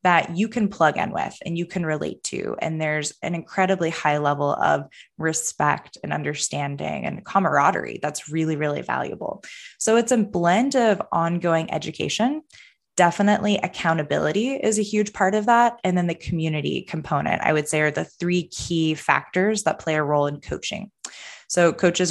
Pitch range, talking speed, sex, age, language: 155-195 Hz, 170 wpm, female, 20-39, English